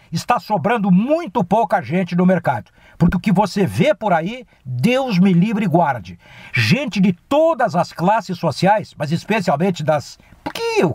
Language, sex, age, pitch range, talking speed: Portuguese, male, 60-79, 155-205 Hz, 165 wpm